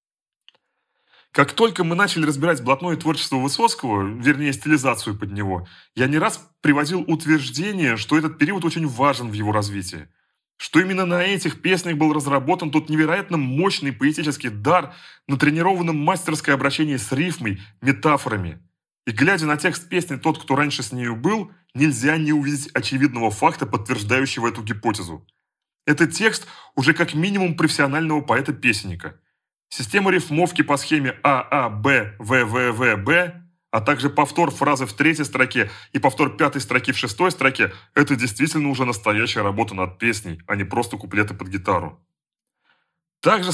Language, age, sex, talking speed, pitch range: Russian, 30-49, male, 145 wpm, 115-160 Hz